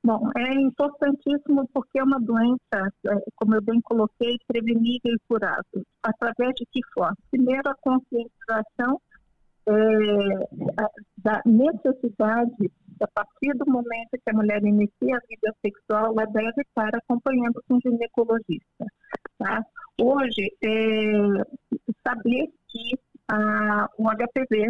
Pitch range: 220-255 Hz